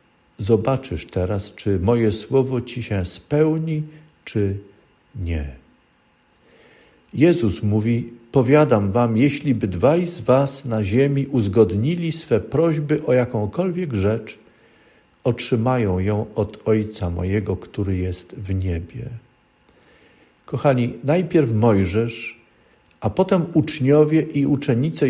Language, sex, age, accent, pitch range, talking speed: Polish, male, 50-69, native, 105-140 Hz, 105 wpm